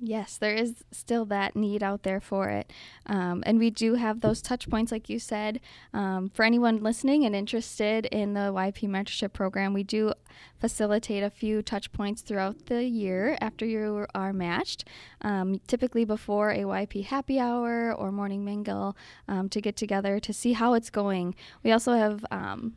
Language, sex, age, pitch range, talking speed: English, female, 10-29, 195-230 Hz, 180 wpm